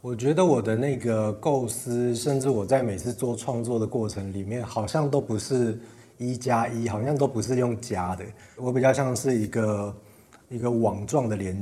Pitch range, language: 105-125 Hz, Chinese